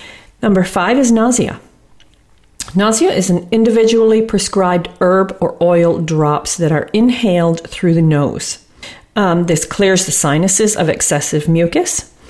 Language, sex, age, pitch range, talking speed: English, female, 40-59, 155-200 Hz, 130 wpm